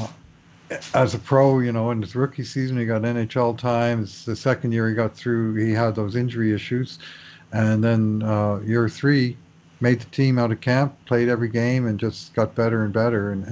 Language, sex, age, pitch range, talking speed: English, male, 50-69, 105-125 Hz, 200 wpm